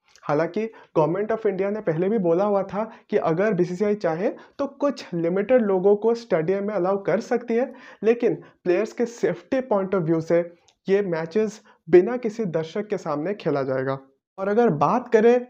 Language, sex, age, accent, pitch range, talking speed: Hindi, male, 30-49, native, 175-225 Hz, 180 wpm